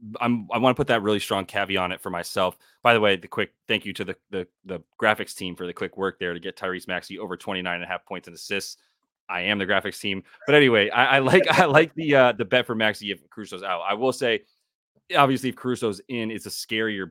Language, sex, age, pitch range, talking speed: English, male, 30-49, 95-120 Hz, 260 wpm